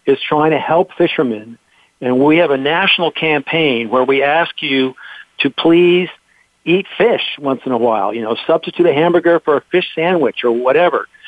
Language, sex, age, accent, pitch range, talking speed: English, male, 50-69, American, 125-160 Hz, 180 wpm